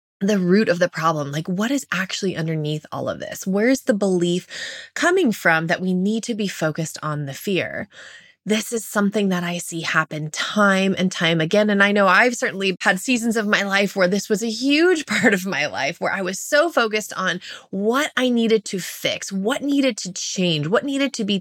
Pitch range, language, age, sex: 190-255 Hz, English, 20-39, female